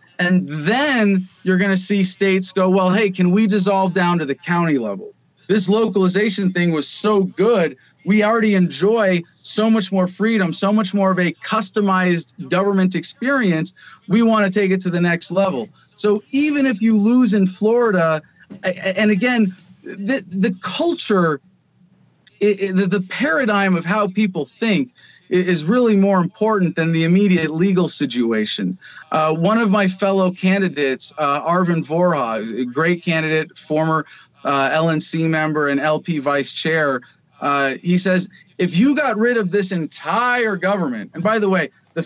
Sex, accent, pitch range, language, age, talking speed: male, American, 160-210 Hz, English, 40-59, 160 wpm